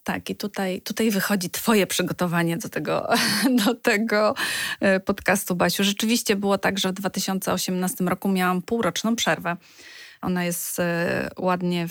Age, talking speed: 20-39, 125 wpm